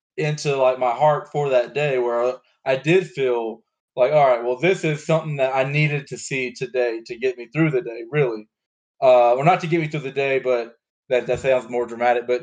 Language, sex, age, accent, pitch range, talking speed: English, male, 20-39, American, 120-145 Hz, 230 wpm